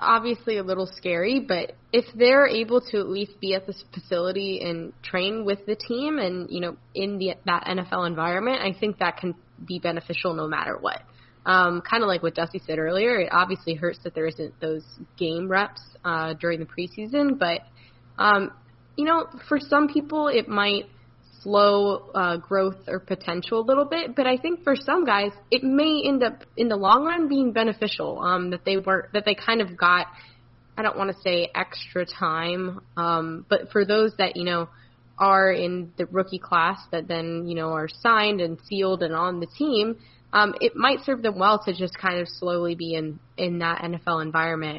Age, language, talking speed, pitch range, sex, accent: 10-29, English, 195 wpm, 170-210 Hz, female, American